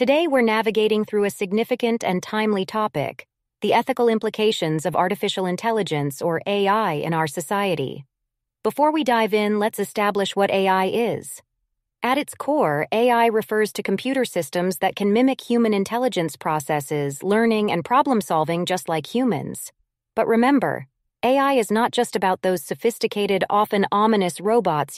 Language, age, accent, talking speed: English, 30-49, American, 145 wpm